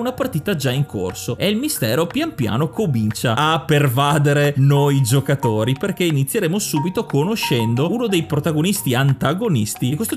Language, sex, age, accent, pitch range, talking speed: Italian, male, 30-49, native, 130-160 Hz, 150 wpm